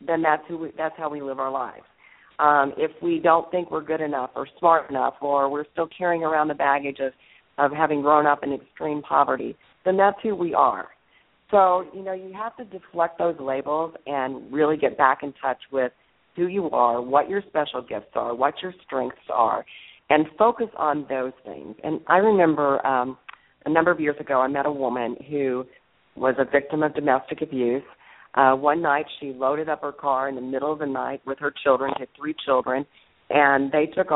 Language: English